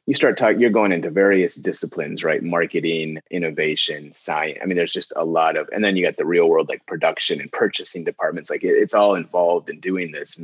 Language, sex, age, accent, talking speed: English, male, 30-49, American, 225 wpm